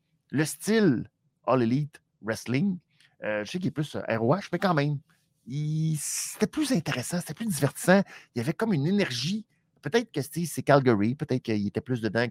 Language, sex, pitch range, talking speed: French, male, 130-175 Hz, 185 wpm